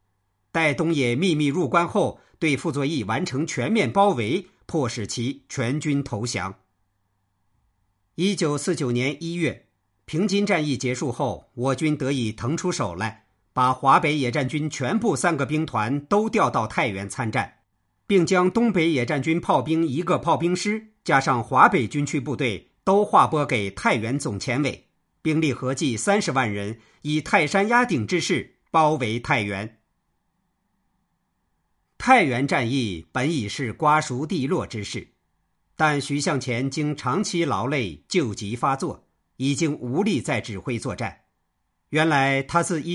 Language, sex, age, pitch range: Chinese, male, 50-69, 115-165 Hz